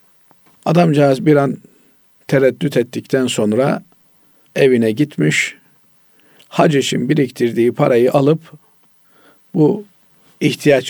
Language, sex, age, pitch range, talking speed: Turkish, male, 50-69, 115-155 Hz, 85 wpm